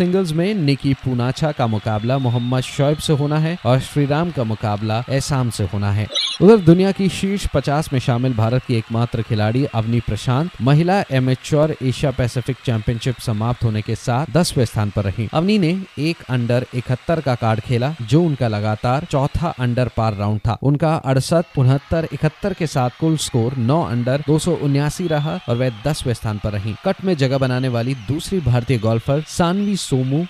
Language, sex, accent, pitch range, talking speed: Hindi, male, native, 115-150 Hz, 175 wpm